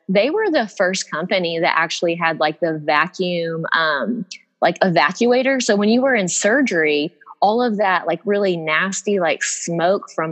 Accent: American